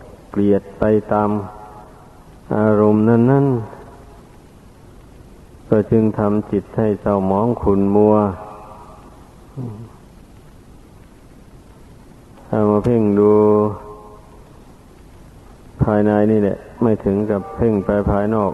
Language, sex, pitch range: Thai, male, 100-110 Hz